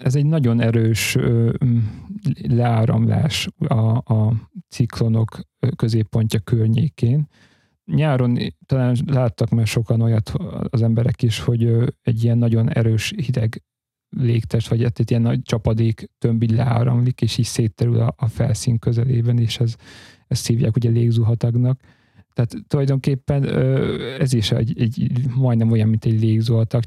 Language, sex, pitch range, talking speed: Hungarian, male, 115-130 Hz, 120 wpm